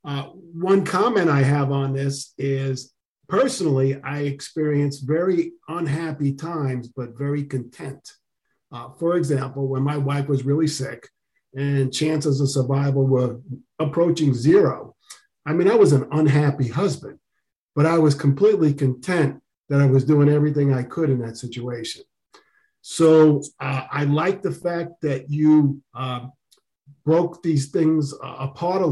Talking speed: 145 wpm